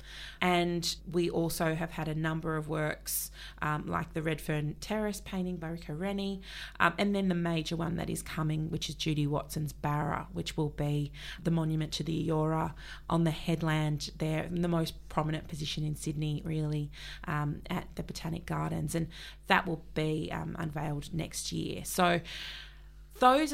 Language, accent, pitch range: English, Australian, 160-180 Hz